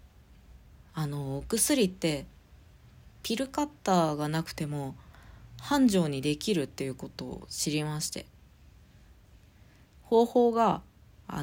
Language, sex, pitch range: Japanese, female, 125-200 Hz